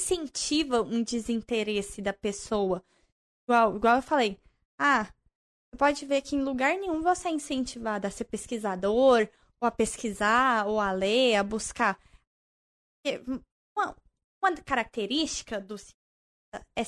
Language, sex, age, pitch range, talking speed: Portuguese, female, 10-29, 230-325 Hz, 120 wpm